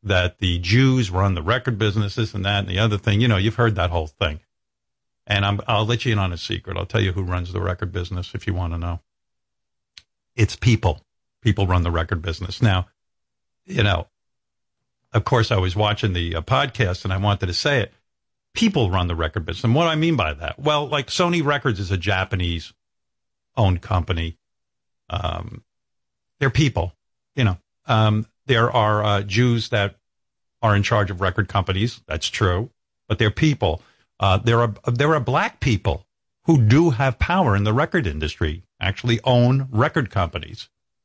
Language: English